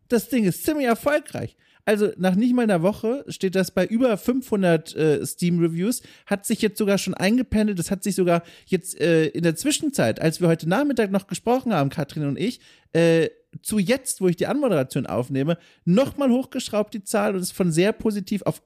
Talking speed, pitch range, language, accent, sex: 200 wpm, 160-215 Hz, German, German, male